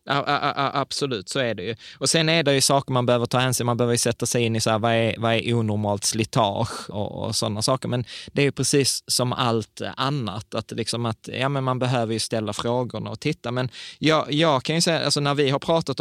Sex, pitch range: male, 110-135 Hz